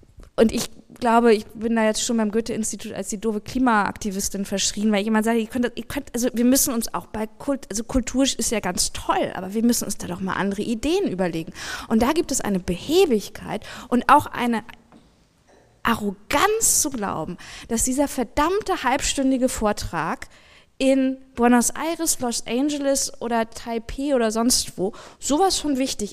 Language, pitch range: German, 205-260 Hz